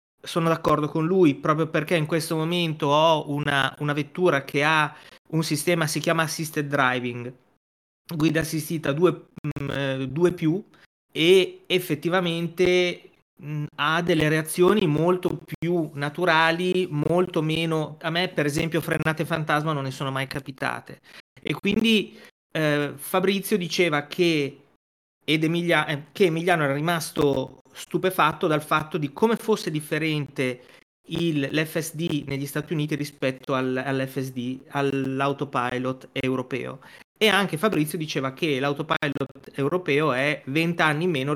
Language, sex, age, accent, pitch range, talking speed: Italian, male, 30-49, native, 140-170 Hz, 125 wpm